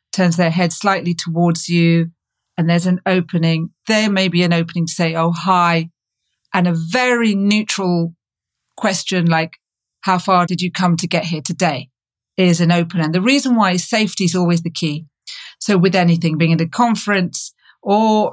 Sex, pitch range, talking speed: female, 170-195 Hz, 175 wpm